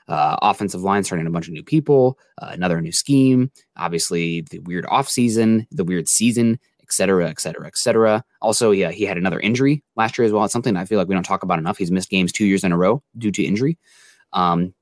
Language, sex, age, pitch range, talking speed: English, male, 20-39, 90-115 Hz, 240 wpm